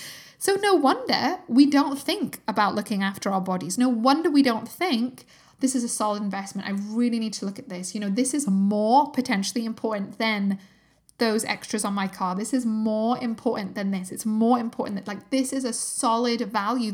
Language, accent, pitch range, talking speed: English, British, 205-270 Hz, 200 wpm